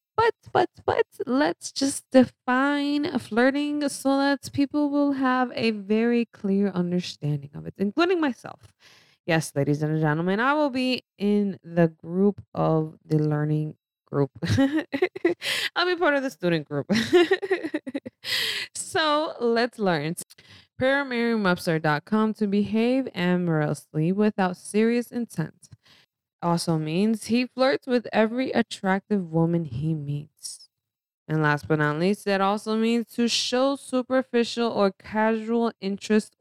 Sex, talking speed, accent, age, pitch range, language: female, 120 wpm, American, 20-39, 165-250 Hz, English